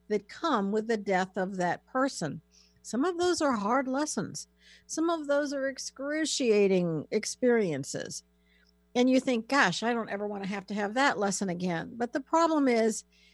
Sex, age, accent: female, 50-69, American